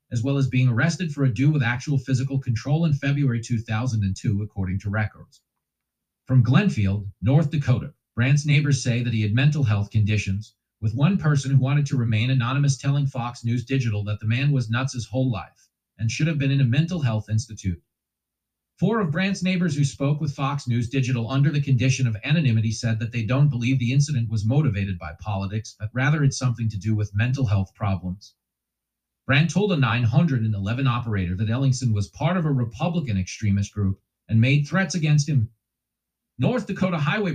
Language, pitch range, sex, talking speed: English, 110-145 Hz, male, 190 wpm